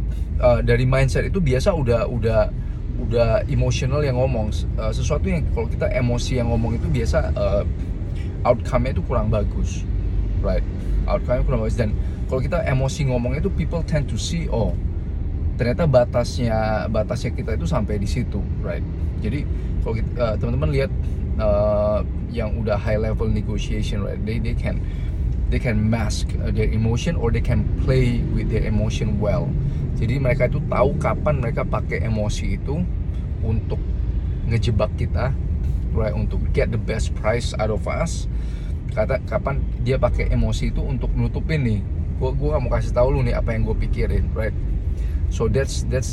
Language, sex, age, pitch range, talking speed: Indonesian, male, 20-39, 85-115 Hz, 155 wpm